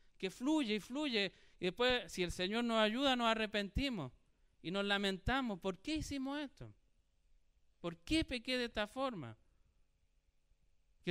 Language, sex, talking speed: Spanish, male, 145 wpm